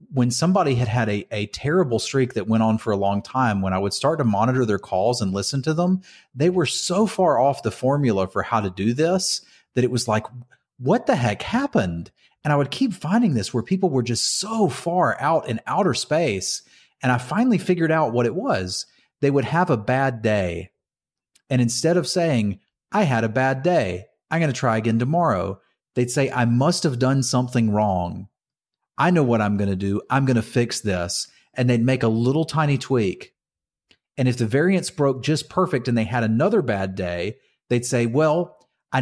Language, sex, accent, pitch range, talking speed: English, male, American, 110-160 Hz, 210 wpm